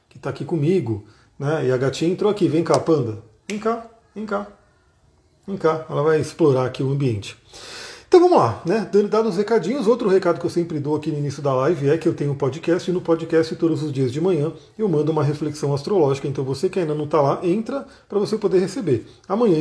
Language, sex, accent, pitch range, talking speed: Portuguese, male, Brazilian, 145-185 Hz, 230 wpm